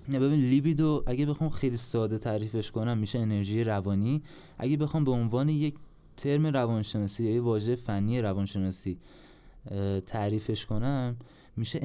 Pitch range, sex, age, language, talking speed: 105-135 Hz, male, 20-39, Persian, 130 wpm